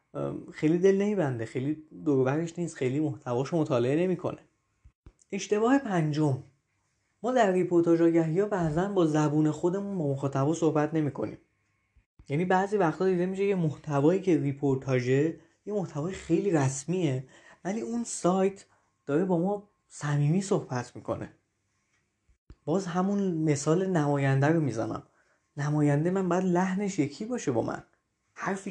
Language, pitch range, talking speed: Persian, 135-180 Hz, 130 wpm